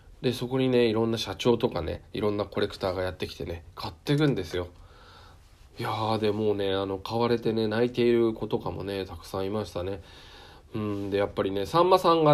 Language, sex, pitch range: Japanese, male, 90-125 Hz